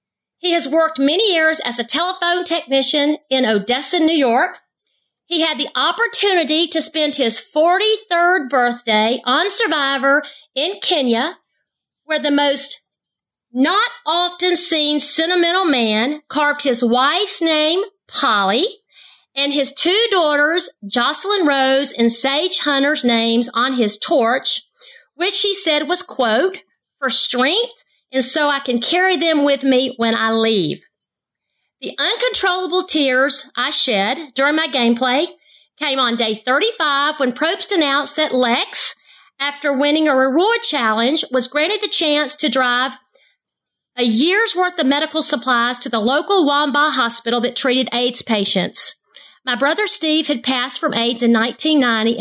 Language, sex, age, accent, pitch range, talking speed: English, female, 40-59, American, 255-330 Hz, 140 wpm